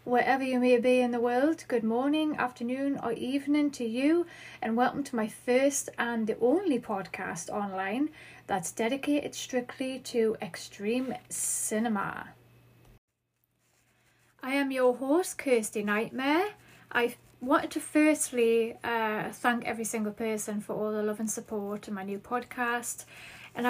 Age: 30-49